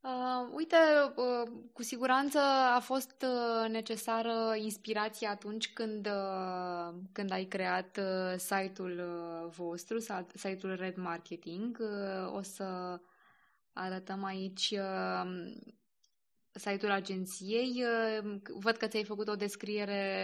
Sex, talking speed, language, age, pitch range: female, 85 wpm, Romanian, 20-39, 185-225 Hz